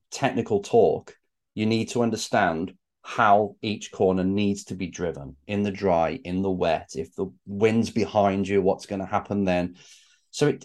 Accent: British